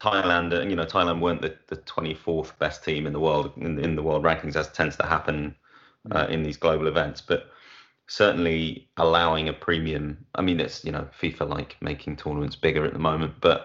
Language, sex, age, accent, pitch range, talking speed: English, male, 30-49, British, 75-85 Hz, 210 wpm